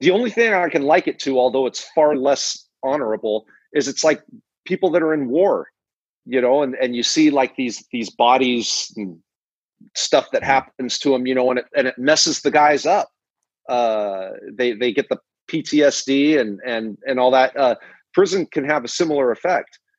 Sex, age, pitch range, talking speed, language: male, 40-59, 125-180 Hz, 195 wpm, English